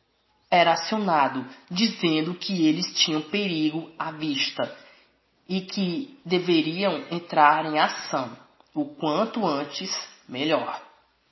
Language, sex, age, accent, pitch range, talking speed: Portuguese, female, 20-39, Brazilian, 150-190 Hz, 100 wpm